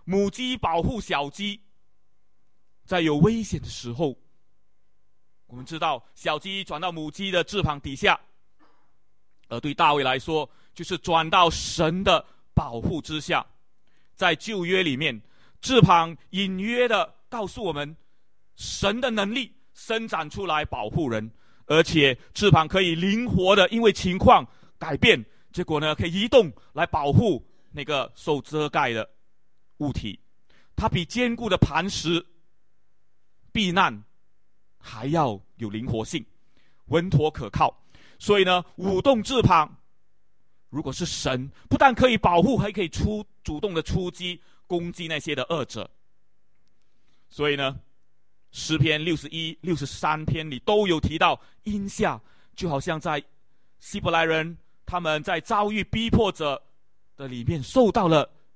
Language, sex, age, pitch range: English, male, 30-49, 145-195 Hz